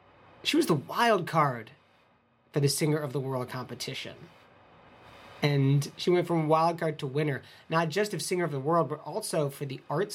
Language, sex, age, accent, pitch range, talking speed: English, male, 40-59, American, 125-160 Hz, 190 wpm